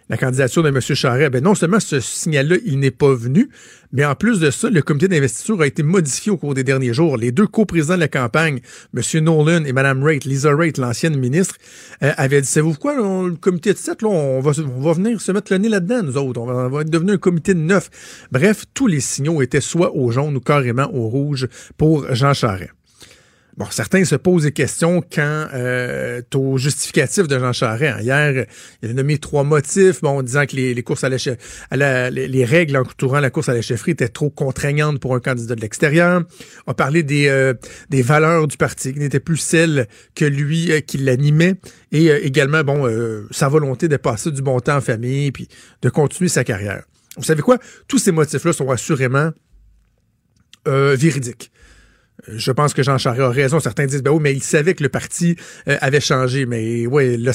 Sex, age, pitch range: male, 50-69, 130-165 Hz